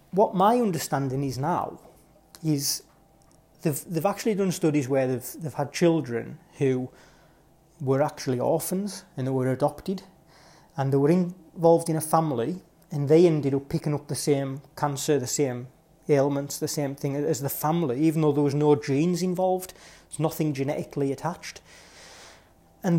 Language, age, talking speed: English, 30-49, 160 wpm